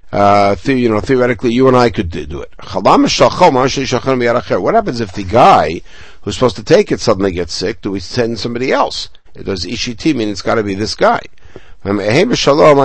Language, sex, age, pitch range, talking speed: English, male, 60-79, 105-140 Hz, 175 wpm